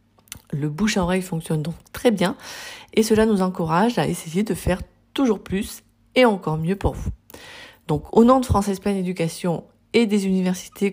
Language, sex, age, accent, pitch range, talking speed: French, female, 40-59, French, 165-210 Hz, 170 wpm